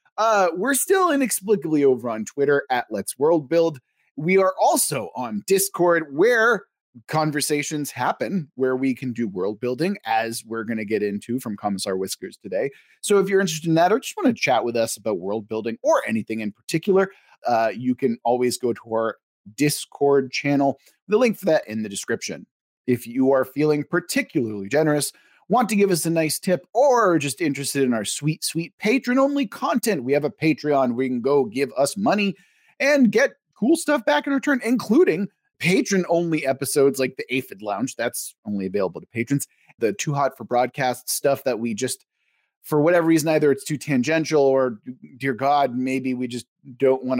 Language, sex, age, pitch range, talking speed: English, male, 30-49, 125-195 Hz, 190 wpm